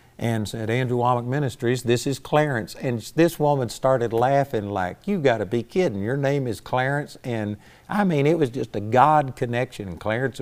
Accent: American